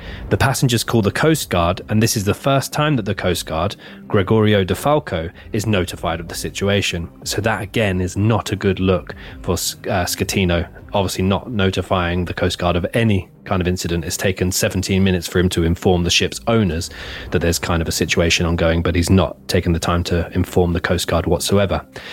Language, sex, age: English, male, 20-39